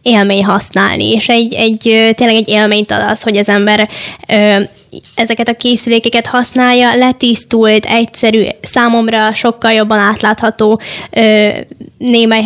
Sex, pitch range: female, 210-230 Hz